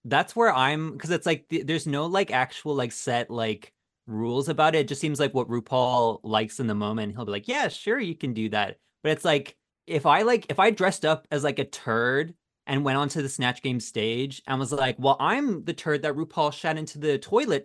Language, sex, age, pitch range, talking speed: English, male, 20-39, 115-165 Hz, 240 wpm